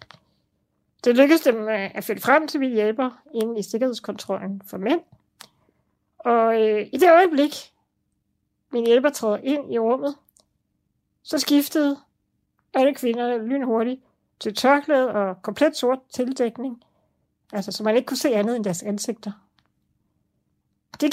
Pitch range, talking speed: 210-275 Hz, 135 wpm